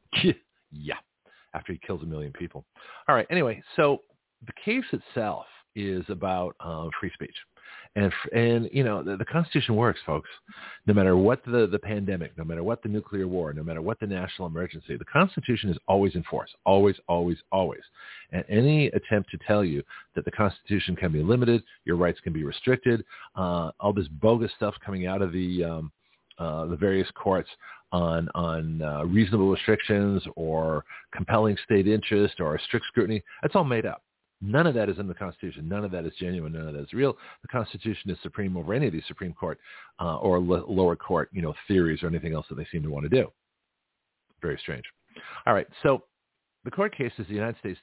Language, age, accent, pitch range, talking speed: English, 50-69, American, 85-110 Hz, 200 wpm